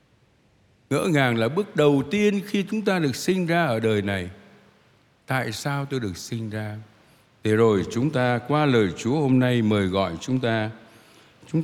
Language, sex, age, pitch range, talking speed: Vietnamese, male, 60-79, 100-140 Hz, 180 wpm